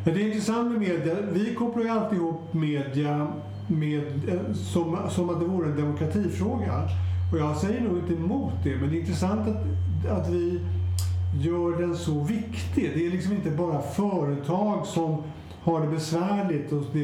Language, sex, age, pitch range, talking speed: Swedish, male, 60-79, 140-180 Hz, 180 wpm